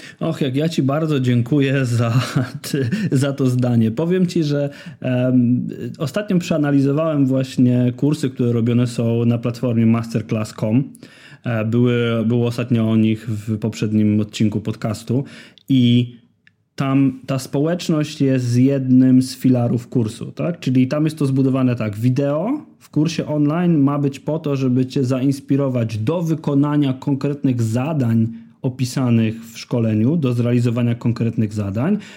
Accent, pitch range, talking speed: native, 120-150 Hz, 130 wpm